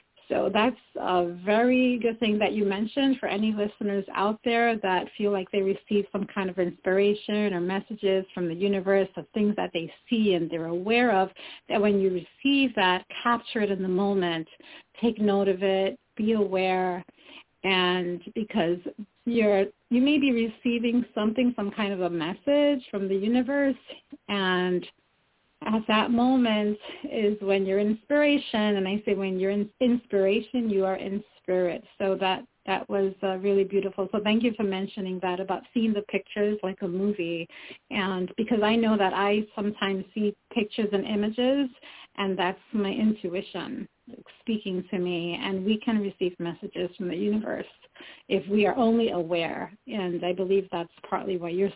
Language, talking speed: English, 170 wpm